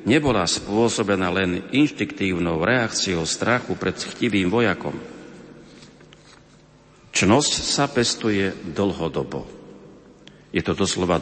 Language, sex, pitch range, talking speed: Slovak, male, 90-120 Hz, 85 wpm